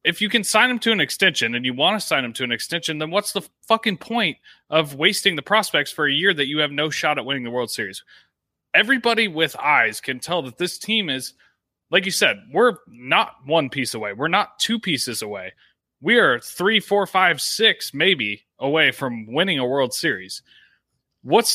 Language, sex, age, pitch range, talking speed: English, male, 30-49, 135-200 Hz, 210 wpm